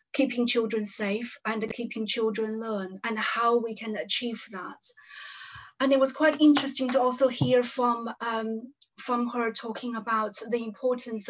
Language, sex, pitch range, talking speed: English, female, 220-260 Hz, 155 wpm